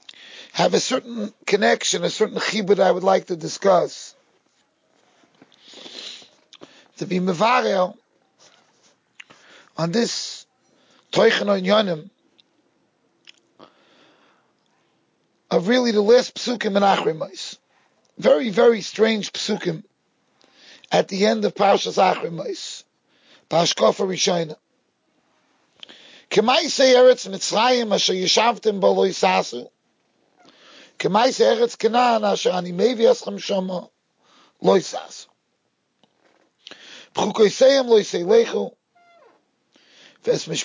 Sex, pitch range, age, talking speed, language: male, 195-280 Hz, 40-59, 70 wpm, English